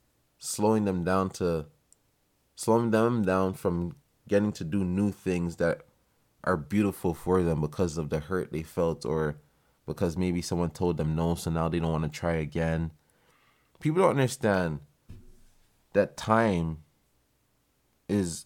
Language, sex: English, male